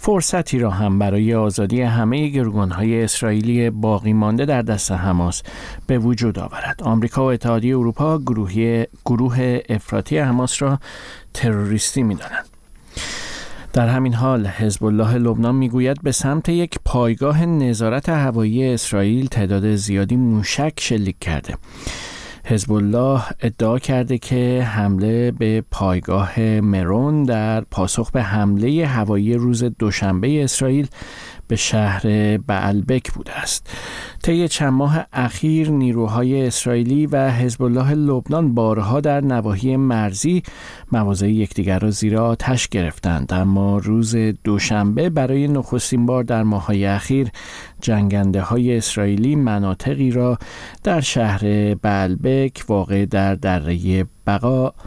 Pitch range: 105-130 Hz